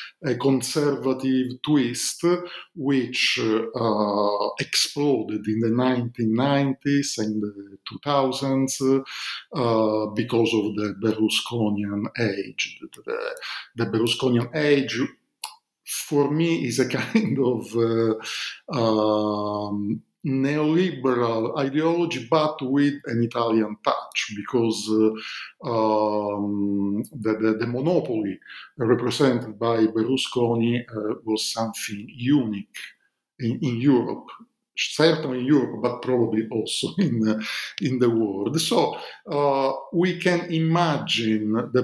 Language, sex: English, male